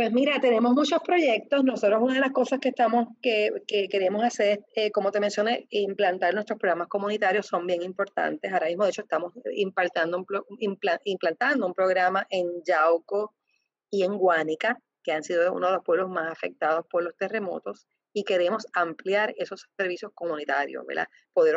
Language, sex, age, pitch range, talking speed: Spanish, female, 30-49, 185-240 Hz, 180 wpm